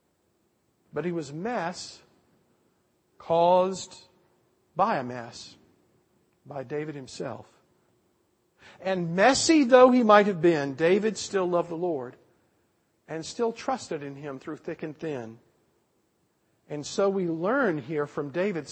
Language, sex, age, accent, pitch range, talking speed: English, male, 50-69, American, 145-205 Hz, 125 wpm